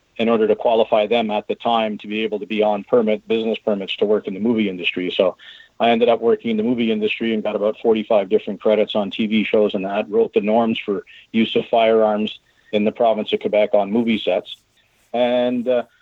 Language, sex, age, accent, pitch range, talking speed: English, male, 40-59, American, 110-125 Hz, 220 wpm